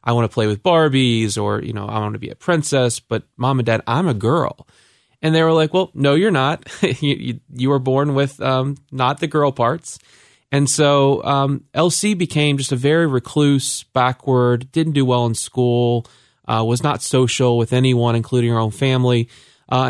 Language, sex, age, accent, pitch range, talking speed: English, male, 30-49, American, 125-145 Hz, 200 wpm